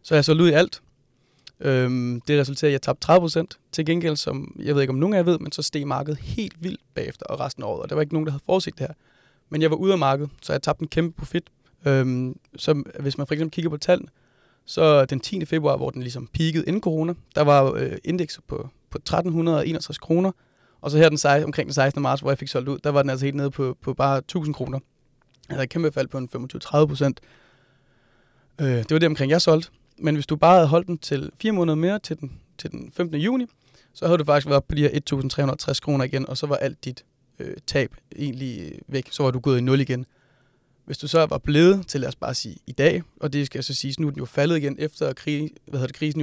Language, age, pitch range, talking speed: Danish, 30-49, 135-160 Hz, 255 wpm